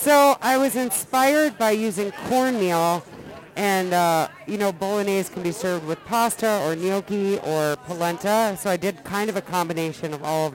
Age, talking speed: 50-69, 175 wpm